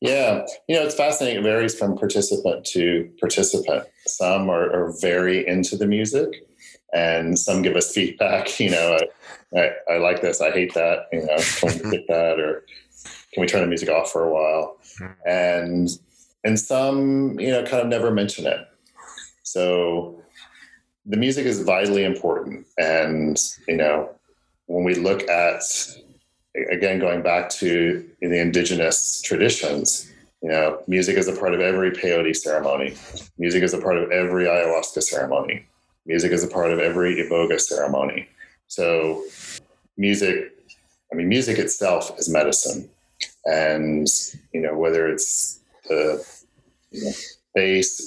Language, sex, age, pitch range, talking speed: English, male, 40-59, 85-110 Hz, 150 wpm